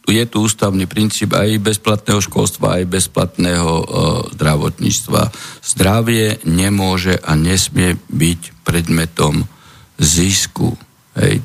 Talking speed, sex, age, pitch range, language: 95 wpm, male, 50-69, 85-100 Hz, Slovak